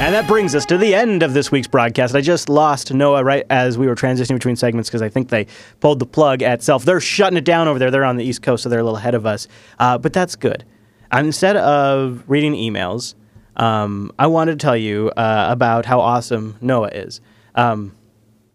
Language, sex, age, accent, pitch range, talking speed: English, male, 30-49, American, 115-140 Hz, 230 wpm